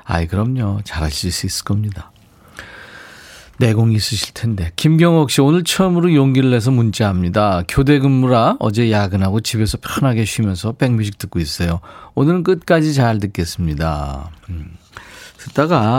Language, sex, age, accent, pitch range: Korean, male, 40-59, native, 95-135 Hz